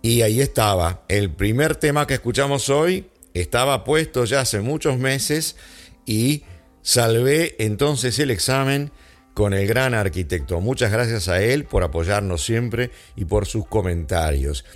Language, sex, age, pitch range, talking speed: English, male, 50-69, 95-140 Hz, 140 wpm